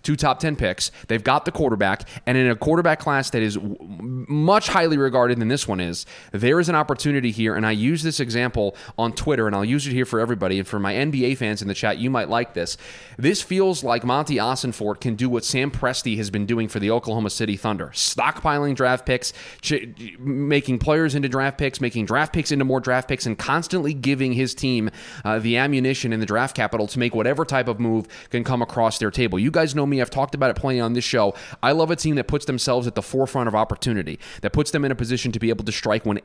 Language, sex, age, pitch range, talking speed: English, male, 20-39, 110-135 Hz, 240 wpm